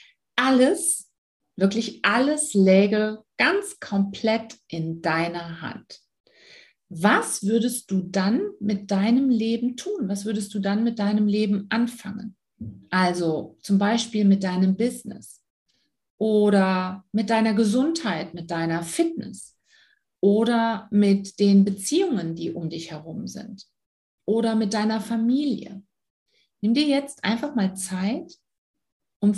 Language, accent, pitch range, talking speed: German, German, 195-250 Hz, 120 wpm